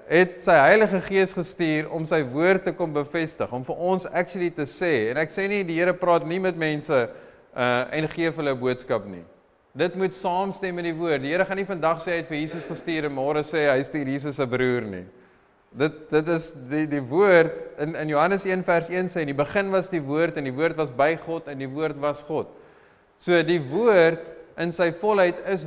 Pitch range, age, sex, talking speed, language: 150-180 Hz, 30-49, male, 220 wpm, English